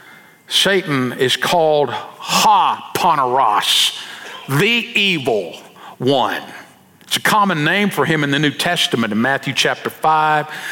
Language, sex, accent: English, male, American